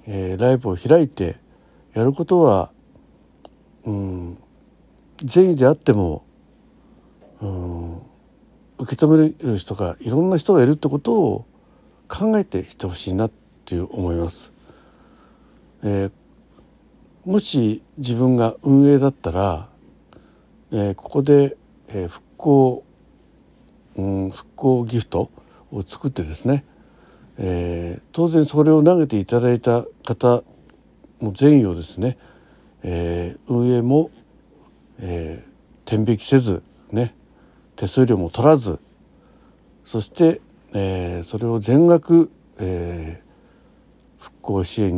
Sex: male